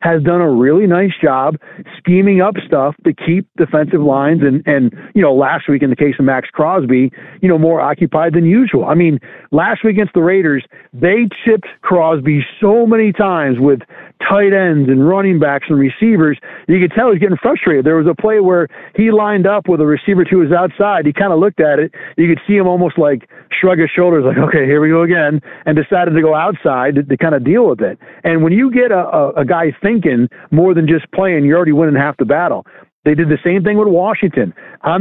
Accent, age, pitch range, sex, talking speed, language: American, 50-69, 150-190 Hz, male, 230 wpm, English